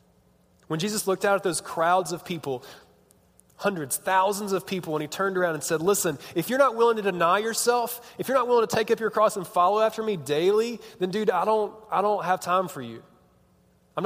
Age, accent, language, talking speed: 20-39, American, English, 220 wpm